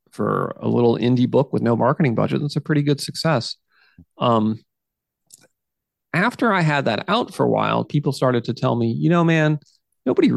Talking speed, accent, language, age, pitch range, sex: 185 wpm, American, English, 30-49, 115-150 Hz, male